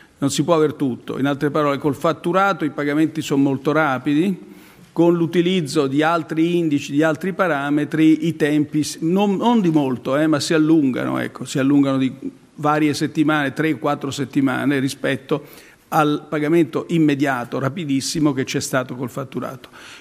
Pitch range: 140-160 Hz